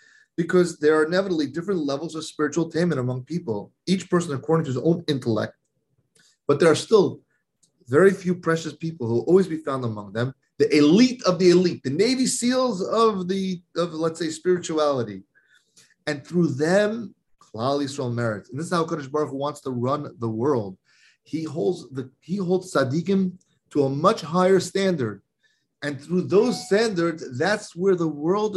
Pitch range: 125-175 Hz